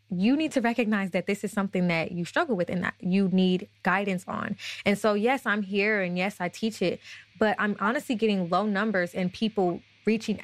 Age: 20-39